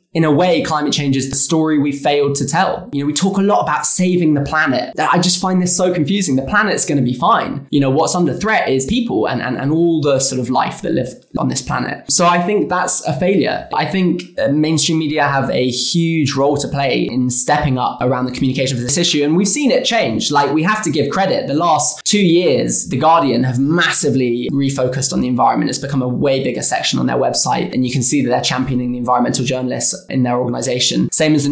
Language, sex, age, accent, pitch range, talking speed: English, male, 20-39, British, 130-170 Hz, 240 wpm